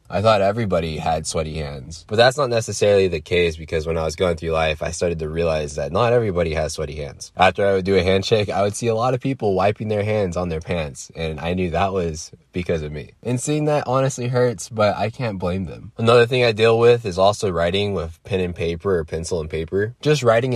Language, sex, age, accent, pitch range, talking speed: English, male, 20-39, American, 80-110 Hz, 245 wpm